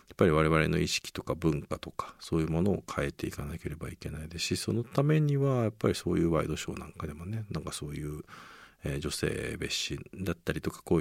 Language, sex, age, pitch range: Japanese, male, 50-69, 80-110 Hz